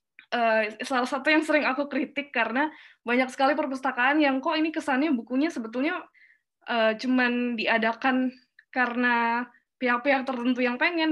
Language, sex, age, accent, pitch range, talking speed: English, female, 10-29, Indonesian, 225-270 Hz, 130 wpm